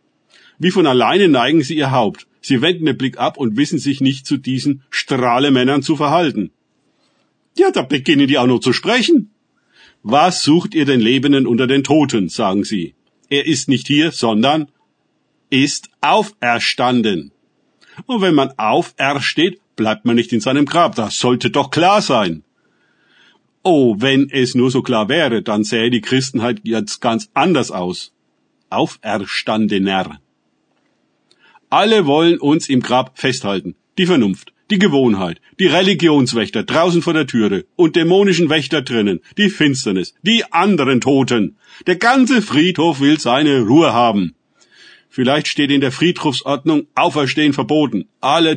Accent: German